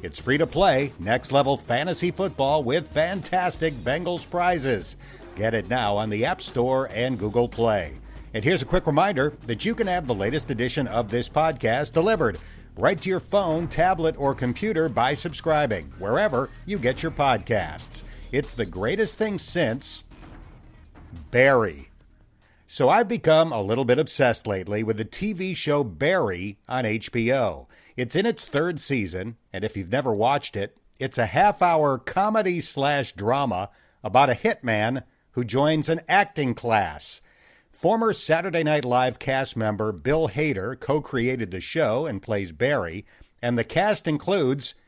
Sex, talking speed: male, 150 wpm